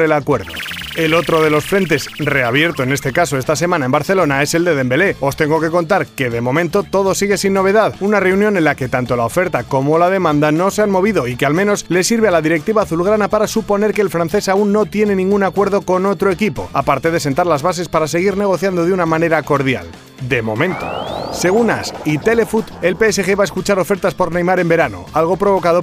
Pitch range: 150-195 Hz